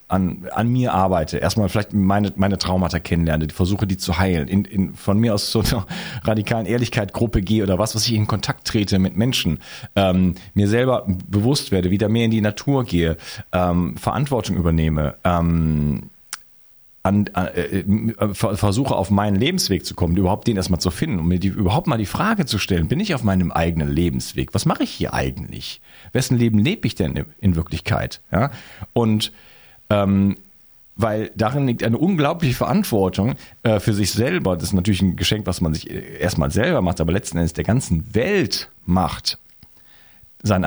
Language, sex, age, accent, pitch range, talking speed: German, male, 40-59, German, 90-115 Hz, 180 wpm